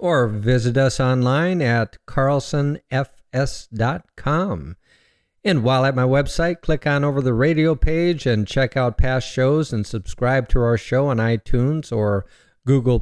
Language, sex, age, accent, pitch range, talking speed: English, male, 50-69, American, 115-150 Hz, 145 wpm